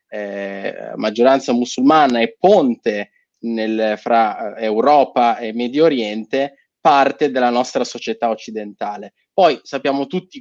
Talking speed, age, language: 105 wpm, 20-39, Italian